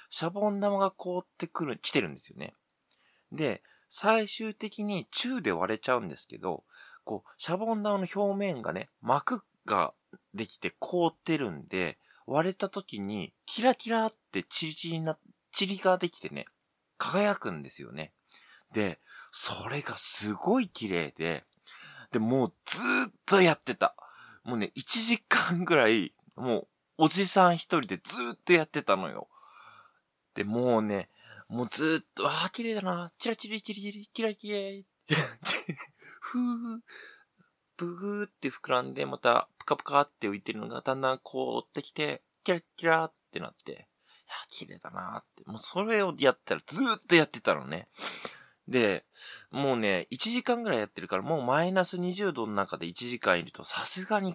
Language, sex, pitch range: Japanese, male, 130-205 Hz